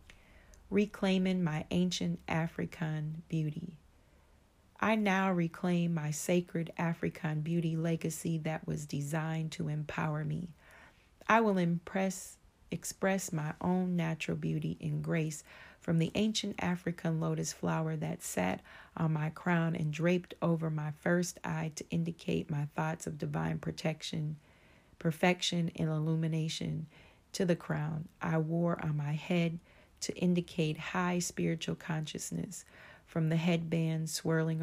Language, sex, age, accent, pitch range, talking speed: English, female, 30-49, American, 155-175 Hz, 125 wpm